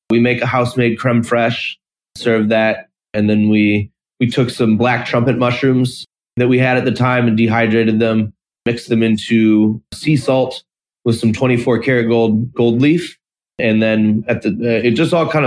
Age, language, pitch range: 30-49, English, 110-130 Hz